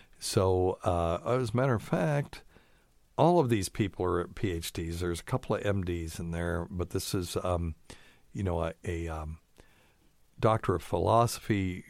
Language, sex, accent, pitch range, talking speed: English, male, American, 90-115 Hz, 160 wpm